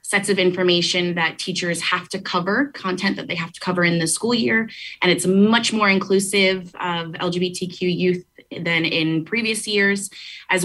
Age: 20-39